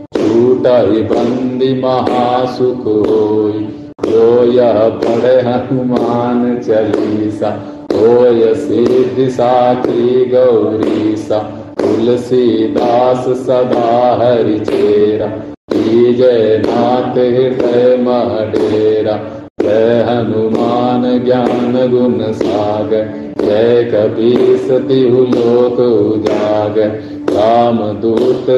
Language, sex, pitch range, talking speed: Hindi, male, 110-125 Hz, 65 wpm